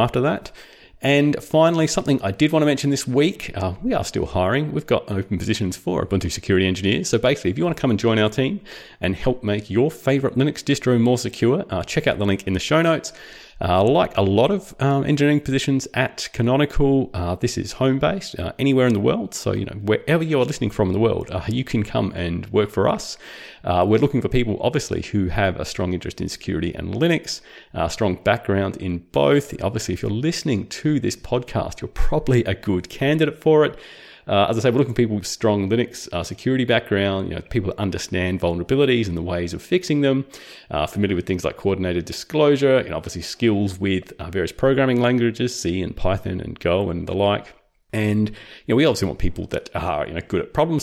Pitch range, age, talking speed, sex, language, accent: 95-135 Hz, 30-49, 225 wpm, male, English, Australian